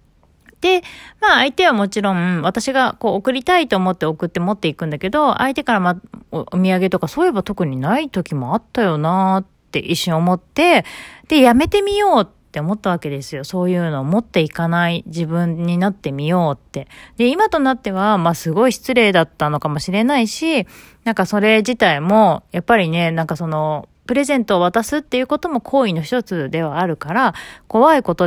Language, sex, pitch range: Japanese, female, 165-250 Hz